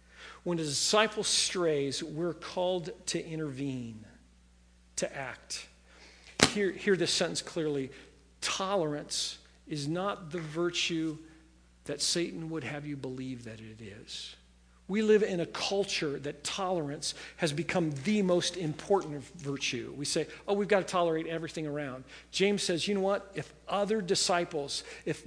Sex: male